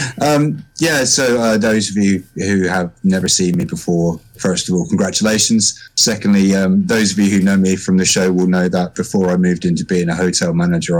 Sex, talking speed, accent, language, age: male, 215 wpm, British, English, 30-49